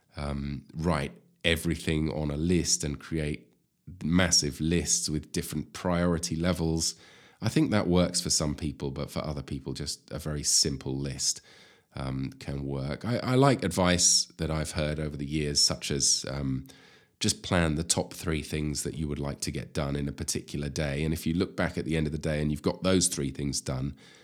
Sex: male